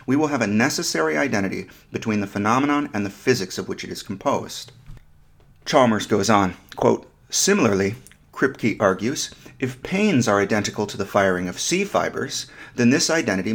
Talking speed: 155 wpm